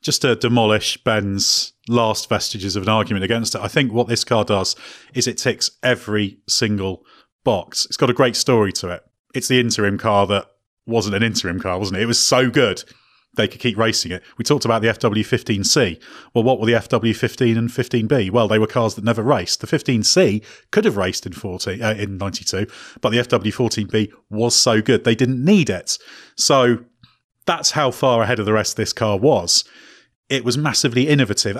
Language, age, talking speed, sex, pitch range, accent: English, 30-49, 200 wpm, male, 105-125 Hz, British